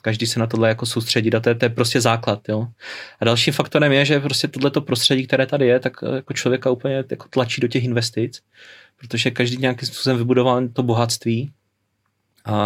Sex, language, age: male, Czech, 30-49